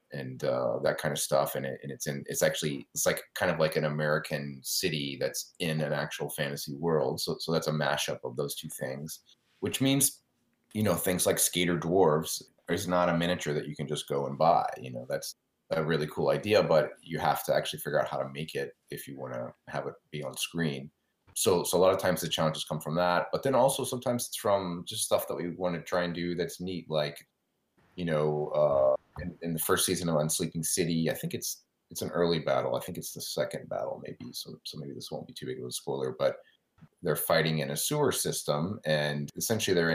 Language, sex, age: English, male, 30-49